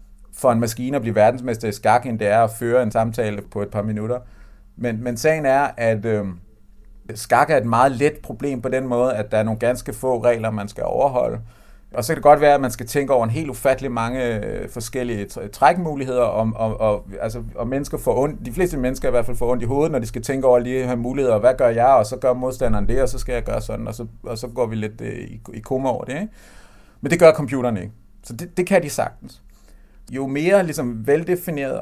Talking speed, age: 245 wpm, 30-49